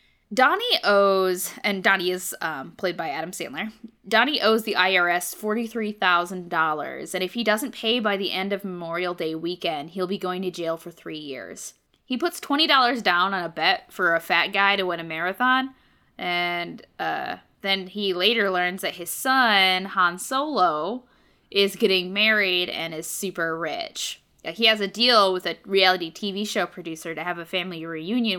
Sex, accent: female, American